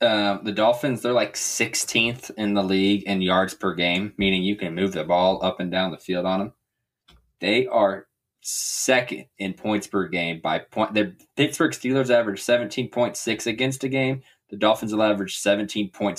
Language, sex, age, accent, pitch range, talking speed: English, male, 20-39, American, 100-120 Hz, 190 wpm